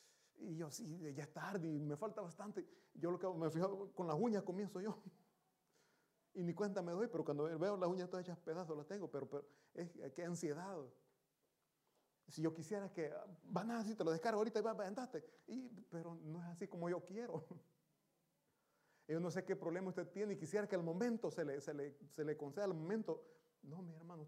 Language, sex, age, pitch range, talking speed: Italian, male, 30-49, 150-200 Hz, 215 wpm